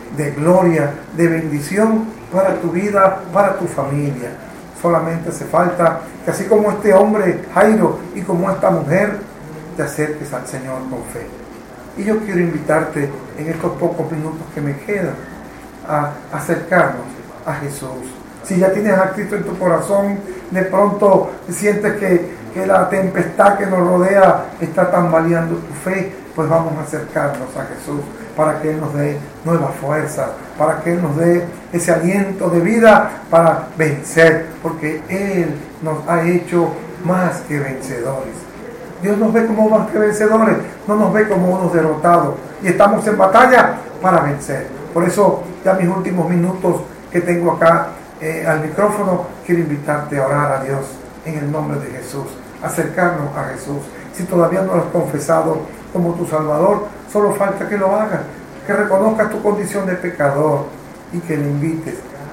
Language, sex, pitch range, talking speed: Spanish, male, 155-195 Hz, 160 wpm